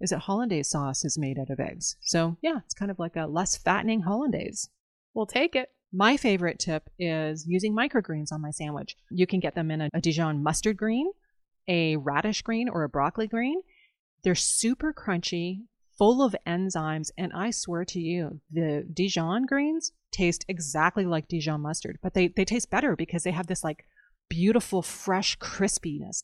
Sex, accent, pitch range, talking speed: female, American, 165-225 Hz, 185 wpm